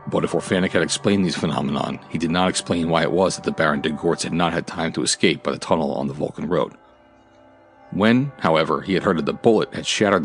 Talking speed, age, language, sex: 245 wpm, 40-59, English, male